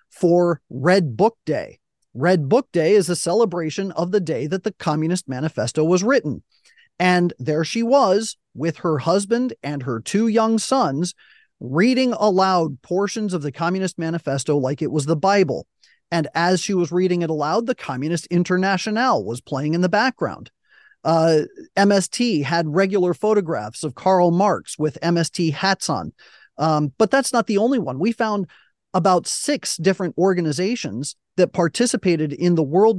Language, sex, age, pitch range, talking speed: English, male, 40-59, 160-210 Hz, 160 wpm